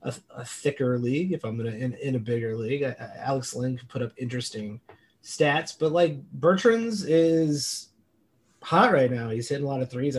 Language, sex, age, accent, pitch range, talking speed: English, male, 30-49, American, 120-180 Hz, 190 wpm